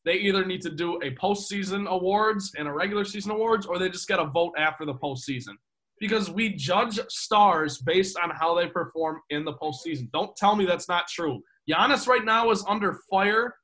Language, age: English, 20-39